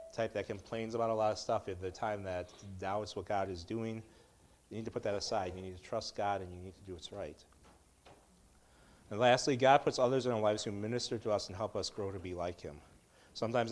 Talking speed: 250 wpm